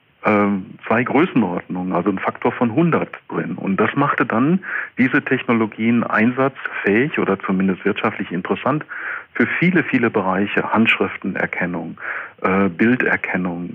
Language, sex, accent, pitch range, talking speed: German, male, German, 100-125 Hz, 115 wpm